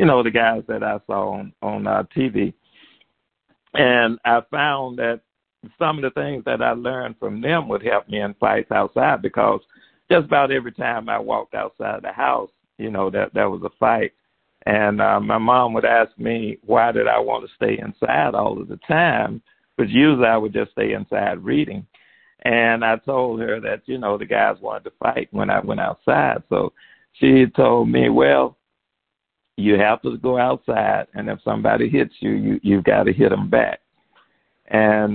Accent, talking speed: American, 195 wpm